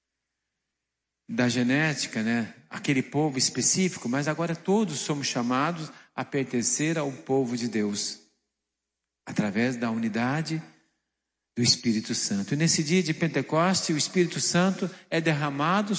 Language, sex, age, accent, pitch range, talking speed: Portuguese, male, 50-69, Brazilian, 120-155 Hz, 125 wpm